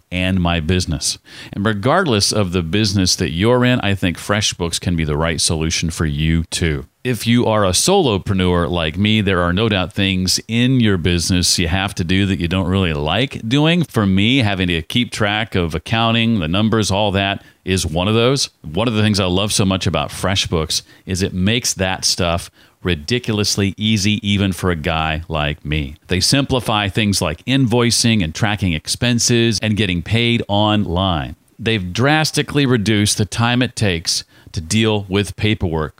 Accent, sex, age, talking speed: American, male, 40-59, 180 wpm